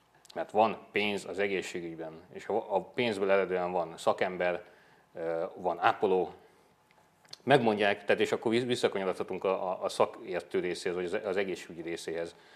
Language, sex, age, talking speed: Hungarian, male, 30-49, 125 wpm